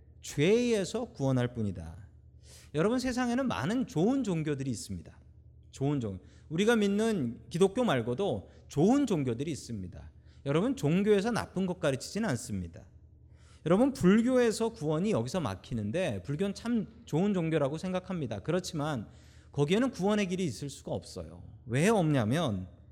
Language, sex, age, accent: Korean, male, 40-59, native